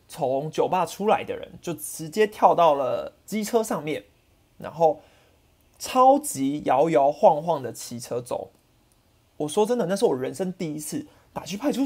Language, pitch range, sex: Chinese, 150-210 Hz, male